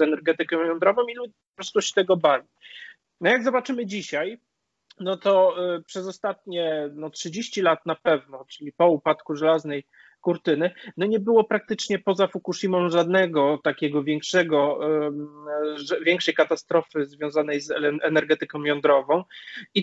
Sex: male